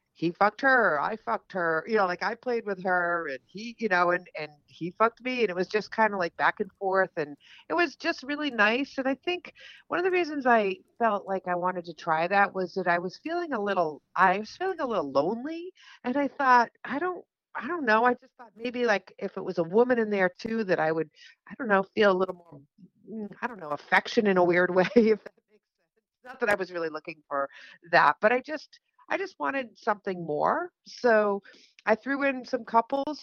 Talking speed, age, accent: 235 wpm, 50-69, American